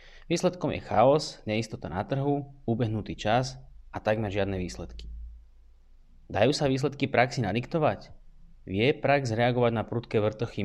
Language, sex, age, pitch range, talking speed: Slovak, male, 20-39, 95-120 Hz, 130 wpm